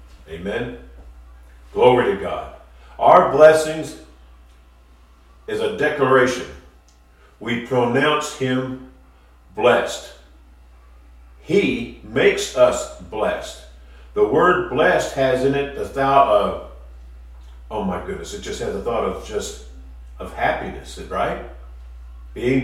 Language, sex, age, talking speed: English, male, 50-69, 110 wpm